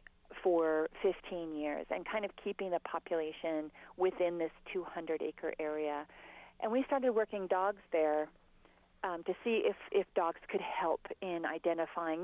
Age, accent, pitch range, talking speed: 40-59, American, 160-190 Hz, 145 wpm